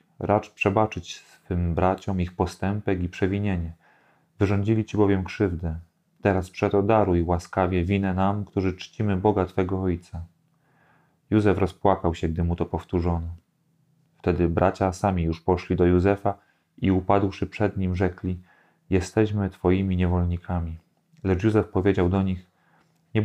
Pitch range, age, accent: 90-105 Hz, 30-49, native